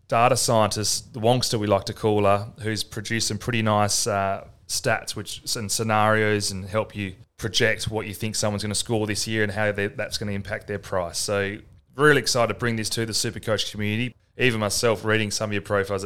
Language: English